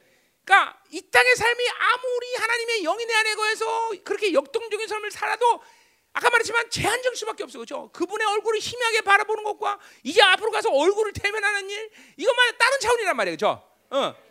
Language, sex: Korean, male